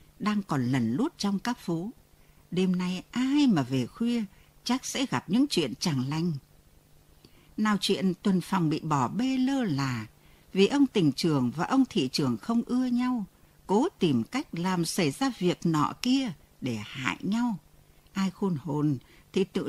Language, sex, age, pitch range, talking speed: Vietnamese, female, 60-79, 140-230 Hz, 175 wpm